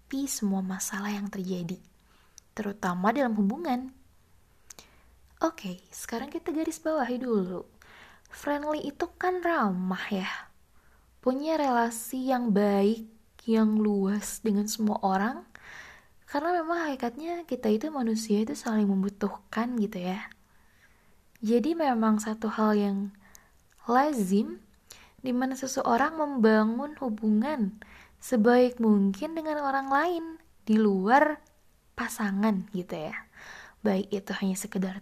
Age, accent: 20-39, native